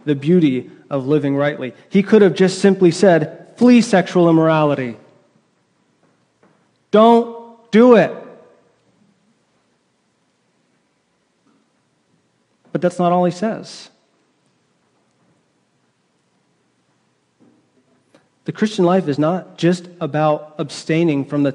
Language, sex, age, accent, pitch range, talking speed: English, male, 30-49, American, 150-185 Hz, 90 wpm